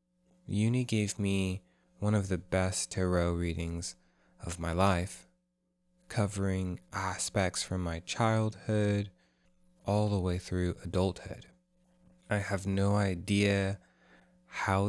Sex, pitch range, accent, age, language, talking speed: male, 90-115 Hz, American, 20-39, English, 110 wpm